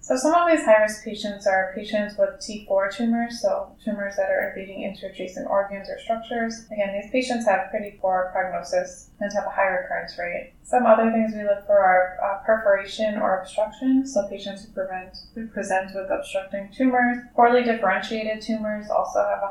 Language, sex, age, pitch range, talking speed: English, female, 20-39, 195-230 Hz, 180 wpm